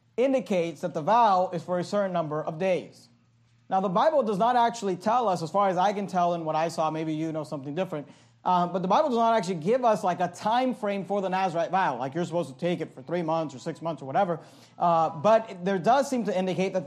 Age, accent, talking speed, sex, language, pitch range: 40-59, American, 265 wpm, male, English, 170-205 Hz